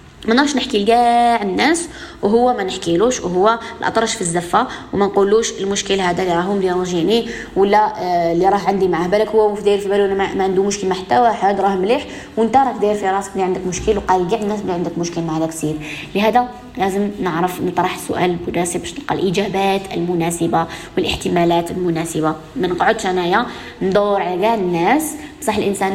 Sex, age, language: female, 20-39, Arabic